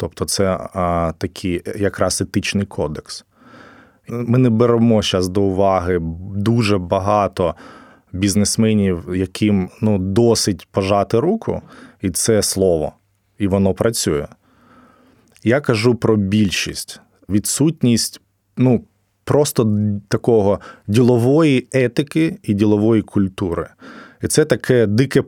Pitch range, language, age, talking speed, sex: 95-115 Hz, Ukrainian, 20-39, 95 wpm, male